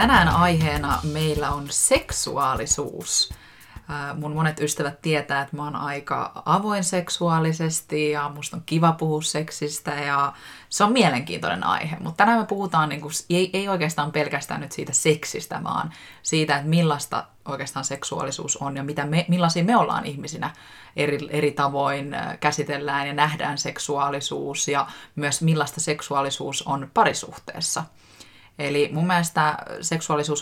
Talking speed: 135 wpm